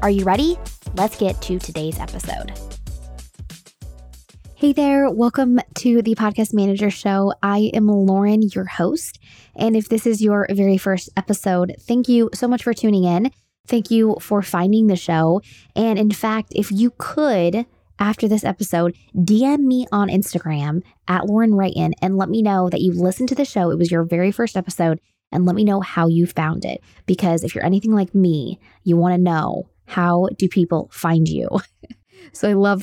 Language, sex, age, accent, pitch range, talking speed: English, female, 20-39, American, 175-220 Hz, 180 wpm